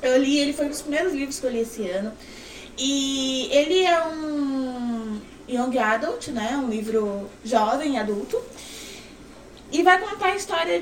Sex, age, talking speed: female, 20-39, 160 wpm